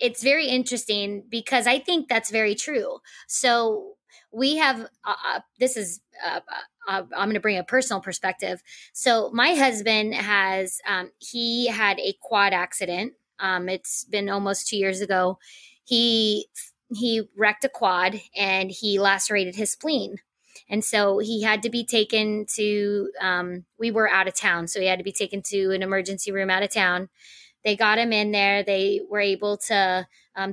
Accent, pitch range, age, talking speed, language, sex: American, 195-250 Hz, 20-39, 175 wpm, English, female